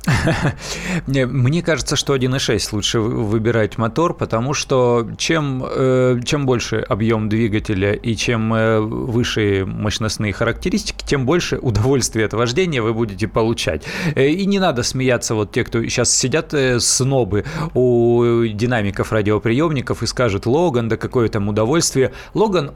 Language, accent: Russian, native